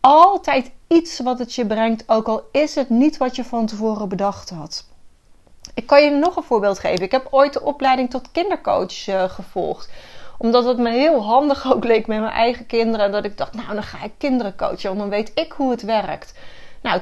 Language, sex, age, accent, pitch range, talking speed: Dutch, female, 30-49, Dutch, 220-275 Hz, 215 wpm